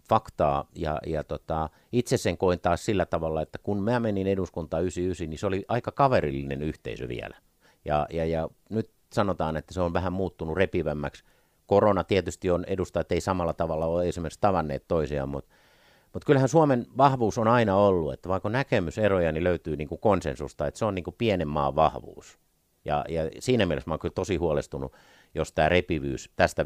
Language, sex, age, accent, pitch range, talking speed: Finnish, male, 50-69, native, 80-100 Hz, 180 wpm